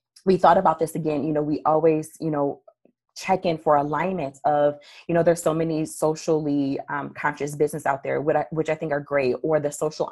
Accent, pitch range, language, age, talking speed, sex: American, 145-165 Hz, English, 20-39, 215 wpm, female